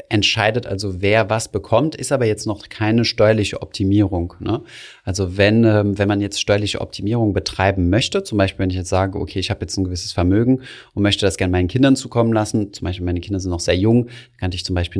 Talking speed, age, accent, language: 230 wpm, 30-49, German, German